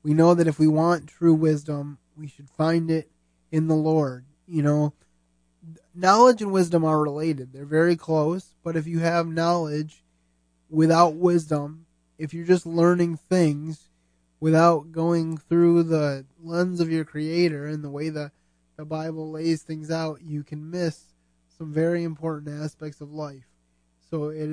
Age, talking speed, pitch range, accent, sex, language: 20-39, 160 wpm, 140-170 Hz, American, male, English